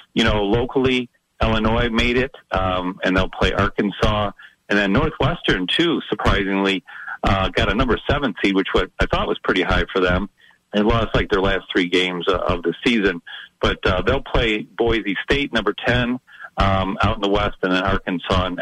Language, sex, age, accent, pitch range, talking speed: English, male, 50-69, American, 95-120 Hz, 185 wpm